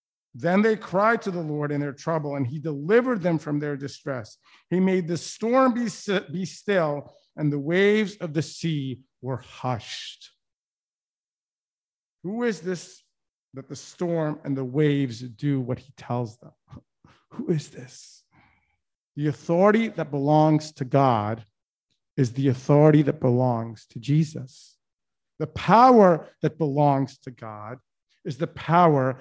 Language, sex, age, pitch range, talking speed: English, male, 50-69, 135-200 Hz, 145 wpm